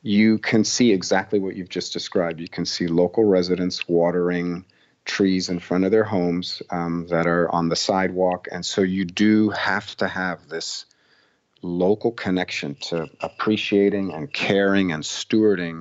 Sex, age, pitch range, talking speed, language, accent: male, 40-59, 90-110 Hz, 160 wpm, English, American